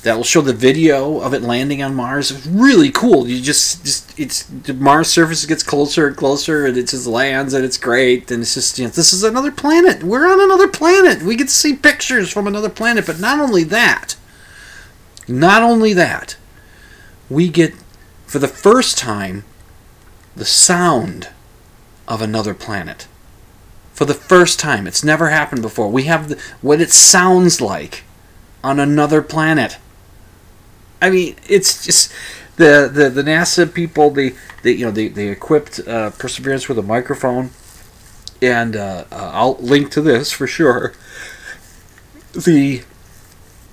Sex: male